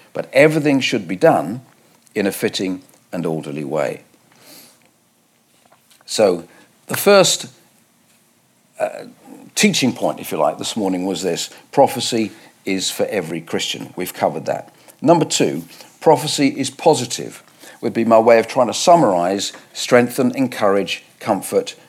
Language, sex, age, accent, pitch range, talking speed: English, male, 50-69, British, 115-160 Hz, 130 wpm